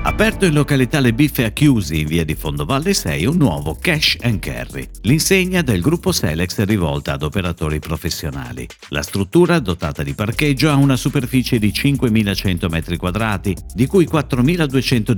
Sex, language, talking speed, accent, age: male, Italian, 160 wpm, native, 50-69